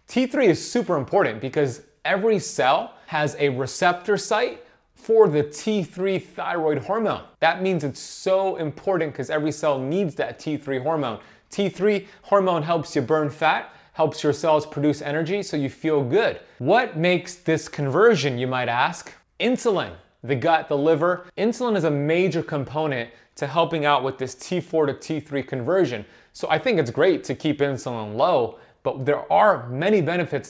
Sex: male